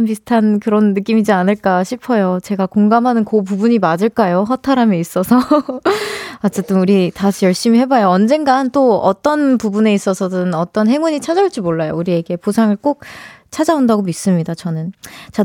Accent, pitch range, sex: native, 200-280 Hz, female